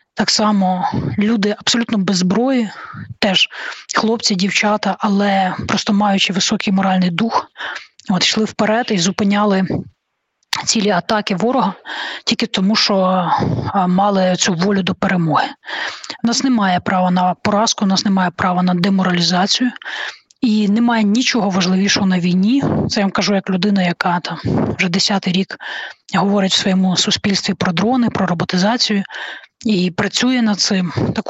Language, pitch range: Ukrainian, 190-220 Hz